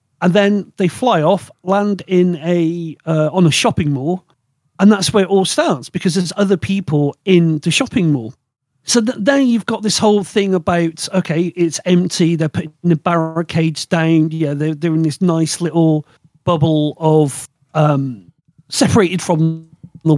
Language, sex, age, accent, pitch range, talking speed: English, male, 40-59, British, 155-195 Hz, 170 wpm